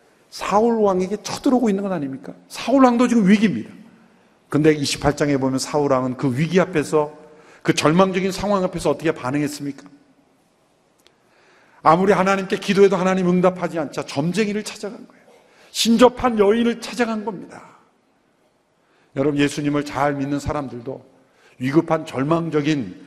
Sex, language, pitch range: male, Korean, 135-210 Hz